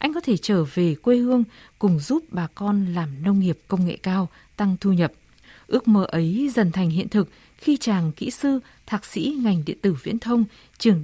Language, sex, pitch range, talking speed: Vietnamese, female, 180-230 Hz, 210 wpm